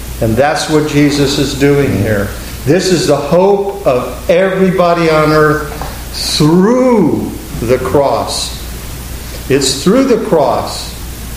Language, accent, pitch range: English, American, 105-150 Hz